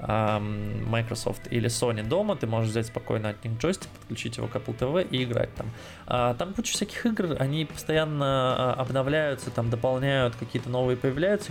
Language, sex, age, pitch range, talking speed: Russian, male, 20-39, 120-140 Hz, 160 wpm